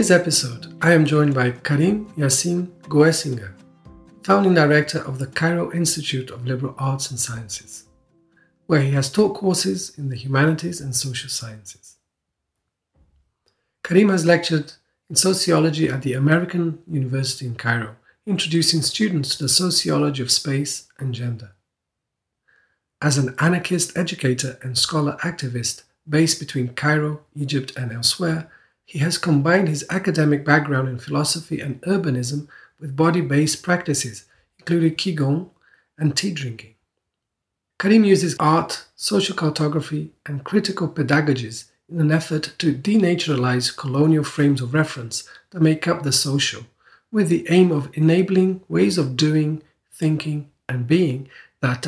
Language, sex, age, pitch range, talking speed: English, male, 50-69, 130-165 Hz, 135 wpm